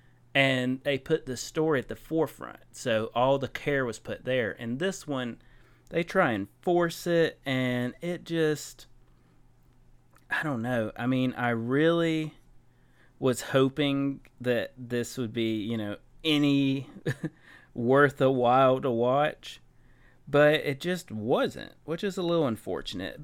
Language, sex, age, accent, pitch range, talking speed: English, male, 30-49, American, 120-145 Hz, 145 wpm